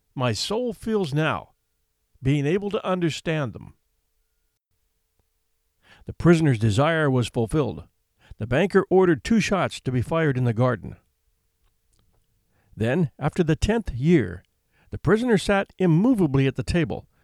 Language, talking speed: English, 130 wpm